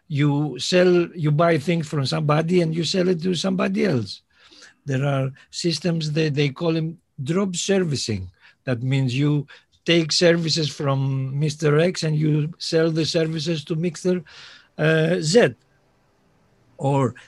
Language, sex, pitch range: Greek, male, 130-170 Hz